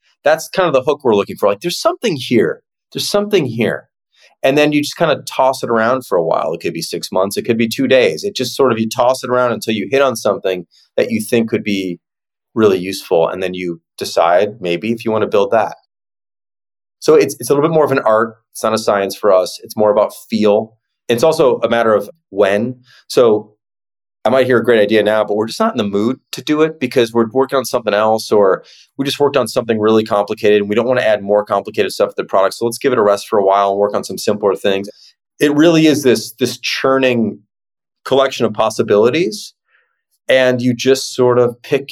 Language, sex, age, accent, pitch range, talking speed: English, male, 30-49, American, 105-135 Hz, 240 wpm